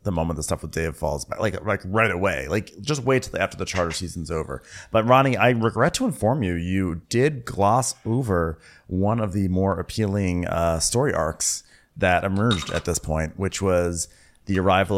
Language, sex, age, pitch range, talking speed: English, male, 30-49, 85-110 Hz, 200 wpm